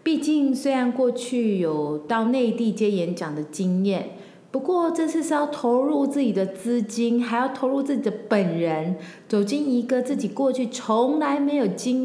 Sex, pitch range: female, 185-270 Hz